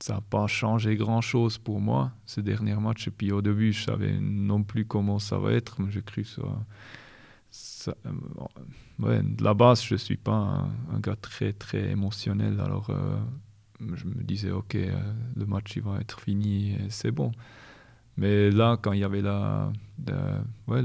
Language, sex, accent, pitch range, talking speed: French, male, French, 100-120 Hz, 195 wpm